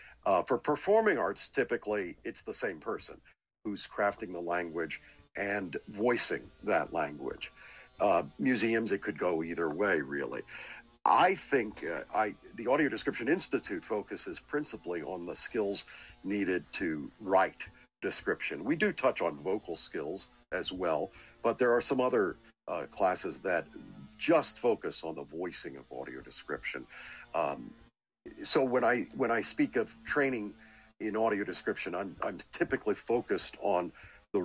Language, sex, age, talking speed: English, male, 60-79, 145 wpm